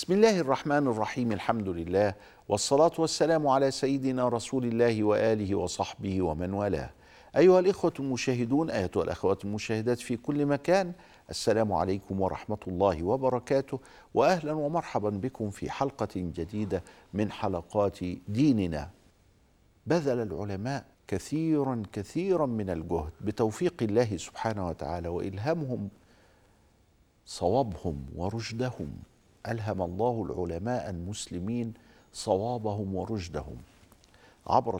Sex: male